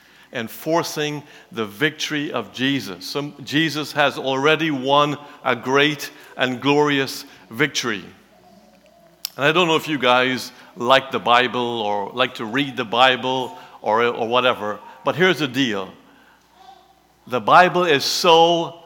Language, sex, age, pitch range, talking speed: English, male, 60-79, 125-155 Hz, 135 wpm